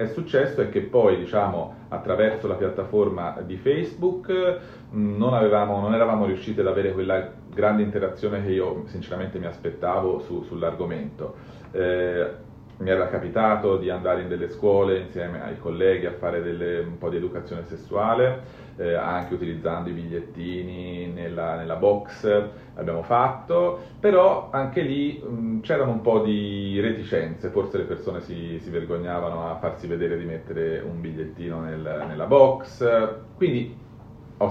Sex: male